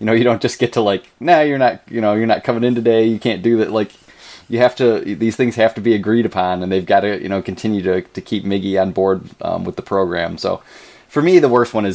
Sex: male